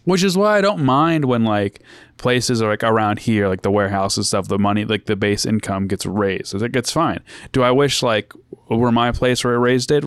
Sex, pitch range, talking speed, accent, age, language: male, 105-125 Hz, 240 wpm, American, 20-39, English